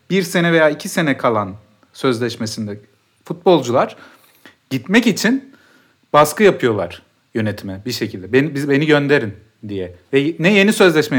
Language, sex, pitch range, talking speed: Turkish, male, 130-185 Hz, 130 wpm